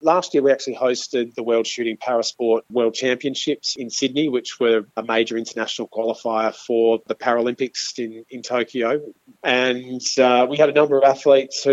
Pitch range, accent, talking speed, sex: 115-135 Hz, Australian, 175 wpm, male